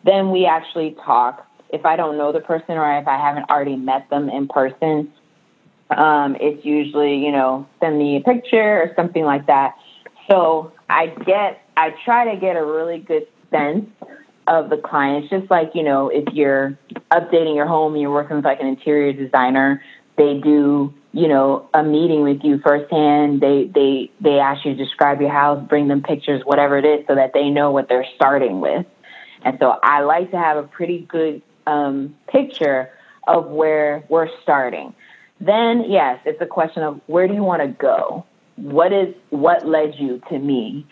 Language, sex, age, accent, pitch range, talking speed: English, female, 20-39, American, 145-180 Hz, 190 wpm